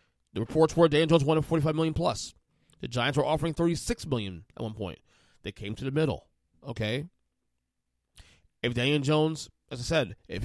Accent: American